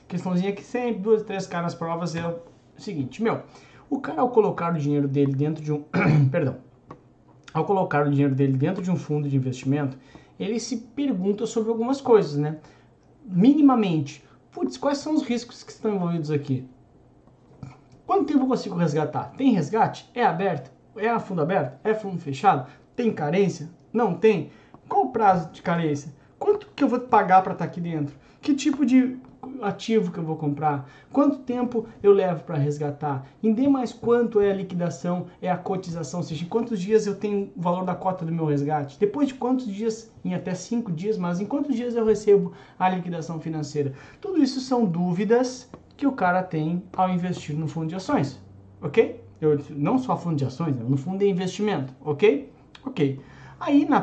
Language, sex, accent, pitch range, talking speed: Portuguese, male, Brazilian, 150-225 Hz, 185 wpm